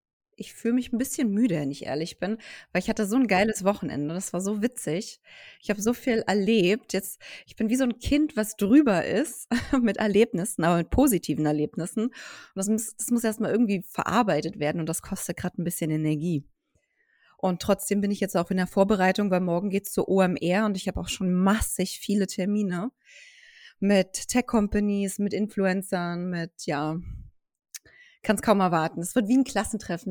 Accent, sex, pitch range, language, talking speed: German, female, 185-240 Hz, German, 190 wpm